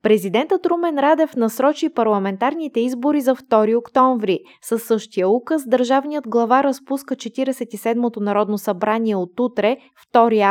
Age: 20-39